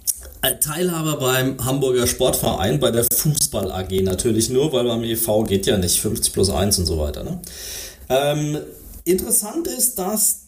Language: German